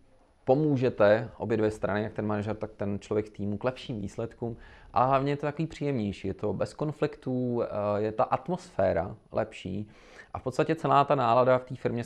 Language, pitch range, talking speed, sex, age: Czech, 105-125 Hz, 185 wpm, male, 30-49